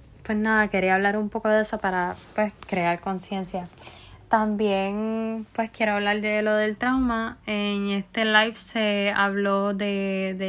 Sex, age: female, 10-29